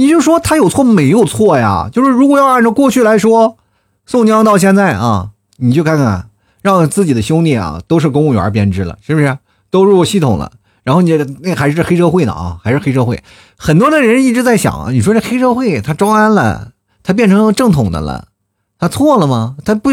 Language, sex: Chinese, male